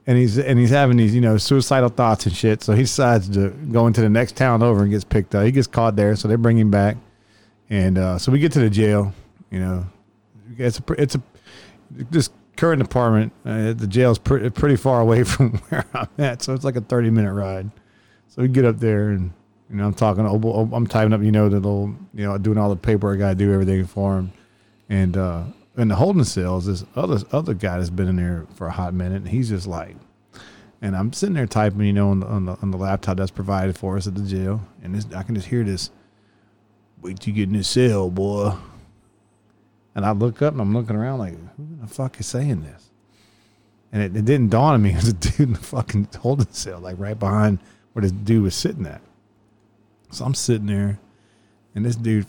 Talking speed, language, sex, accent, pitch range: 235 wpm, English, male, American, 100-115 Hz